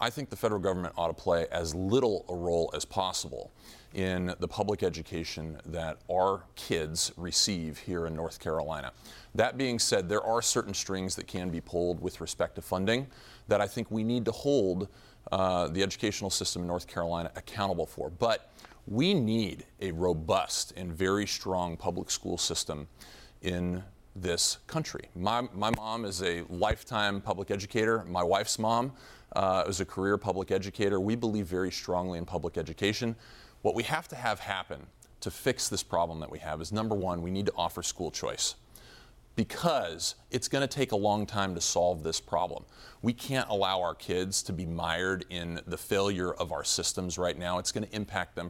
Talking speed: 185 wpm